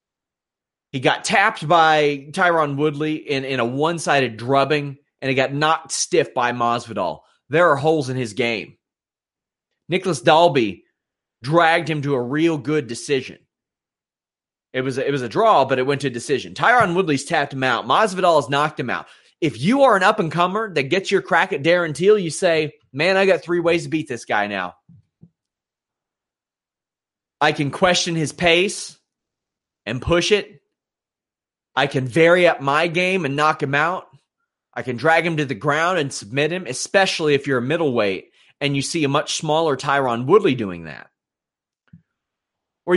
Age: 30-49